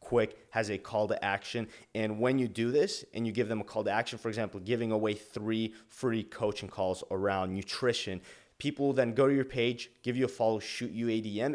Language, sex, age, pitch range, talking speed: English, male, 30-49, 100-115 Hz, 220 wpm